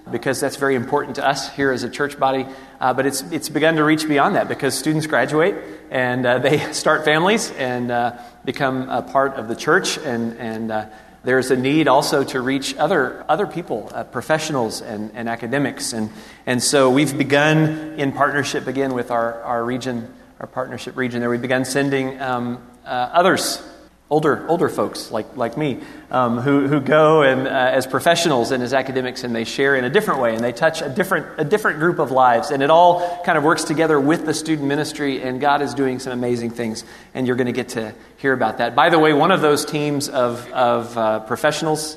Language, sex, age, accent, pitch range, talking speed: English, male, 40-59, American, 120-145 Hz, 210 wpm